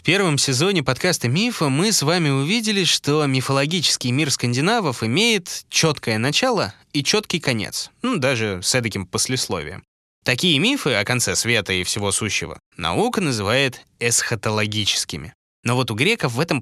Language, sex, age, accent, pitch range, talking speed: Russian, male, 20-39, native, 105-150 Hz, 150 wpm